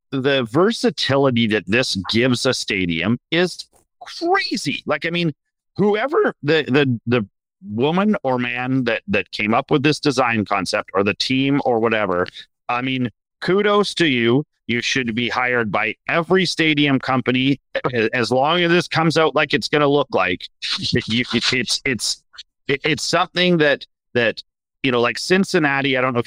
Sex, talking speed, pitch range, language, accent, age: male, 165 wpm, 115-145 Hz, English, American, 40-59